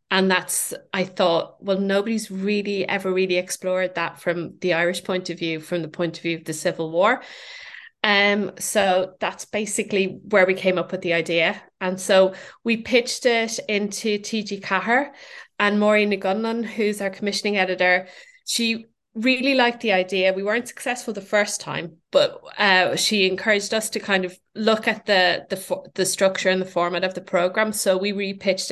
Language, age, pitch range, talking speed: English, 20-39, 180-210 Hz, 180 wpm